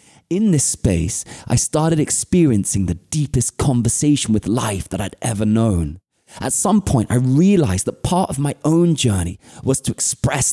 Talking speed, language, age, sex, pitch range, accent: 165 wpm, English, 20-39, male, 105-145 Hz, British